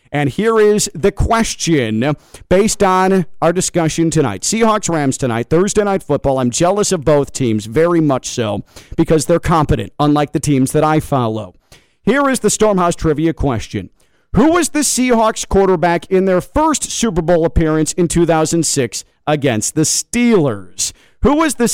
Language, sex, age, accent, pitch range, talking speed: English, male, 40-59, American, 140-185 Hz, 155 wpm